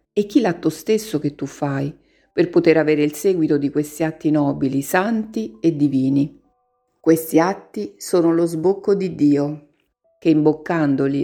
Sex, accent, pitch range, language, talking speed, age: female, native, 145-180 Hz, Italian, 150 wpm, 50-69